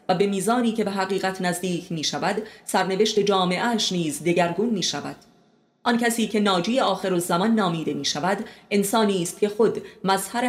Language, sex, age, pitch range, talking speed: Persian, female, 30-49, 170-210 Hz, 165 wpm